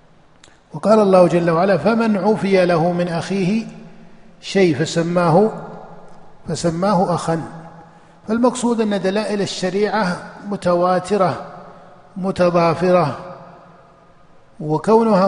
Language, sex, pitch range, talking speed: Arabic, male, 170-200 Hz, 80 wpm